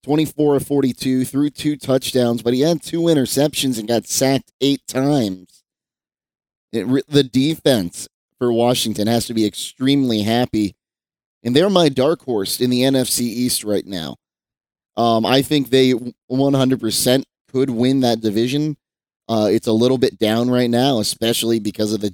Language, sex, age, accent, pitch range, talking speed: English, male, 30-49, American, 115-135 Hz, 155 wpm